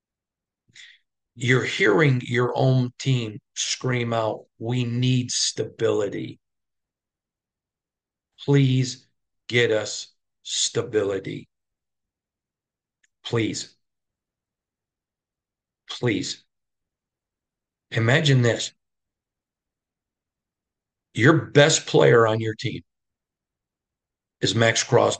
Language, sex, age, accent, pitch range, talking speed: English, male, 50-69, American, 110-130 Hz, 65 wpm